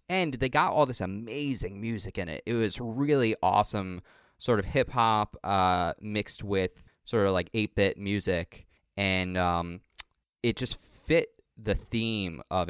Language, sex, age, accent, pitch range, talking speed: English, male, 20-39, American, 95-120 Hz, 145 wpm